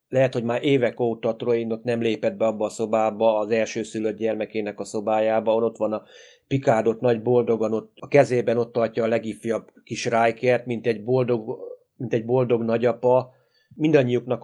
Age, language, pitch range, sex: 30-49, Hungarian, 110-130 Hz, male